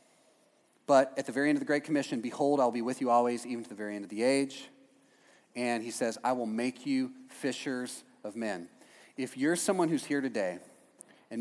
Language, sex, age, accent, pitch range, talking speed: English, male, 30-49, American, 120-155 Hz, 210 wpm